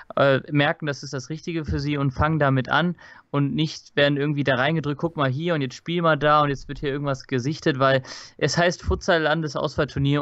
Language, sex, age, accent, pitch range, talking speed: German, male, 20-39, German, 130-160 Hz, 215 wpm